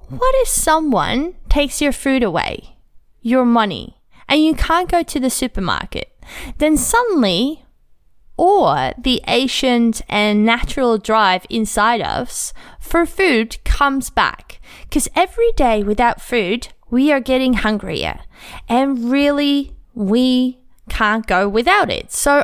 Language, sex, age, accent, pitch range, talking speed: English, female, 20-39, Australian, 215-285 Hz, 125 wpm